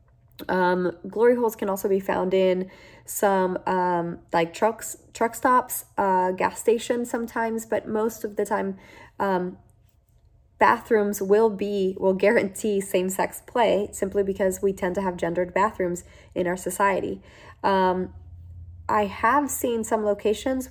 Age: 20-39